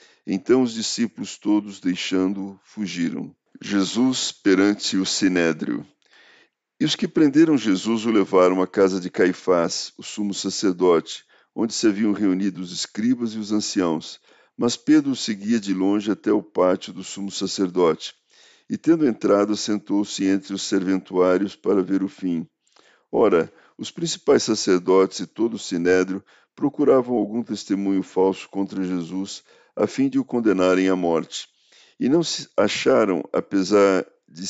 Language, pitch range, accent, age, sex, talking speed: Portuguese, 95-120 Hz, Brazilian, 50-69, male, 145 wpm